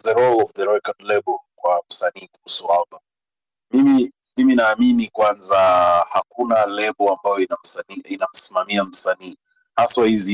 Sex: male